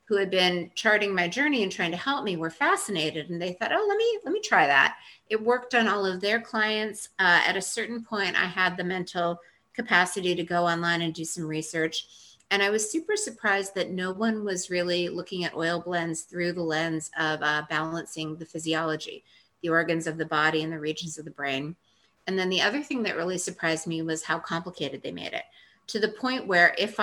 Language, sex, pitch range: English, female, 160-195 Hz